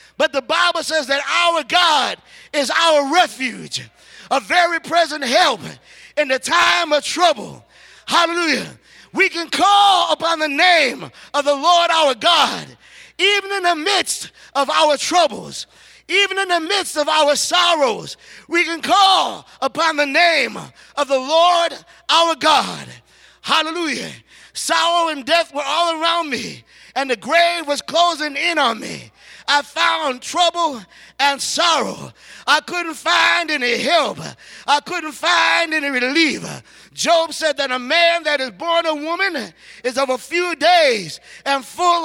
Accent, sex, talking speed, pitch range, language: American, male, 150 wpm, 290-345 Hz, English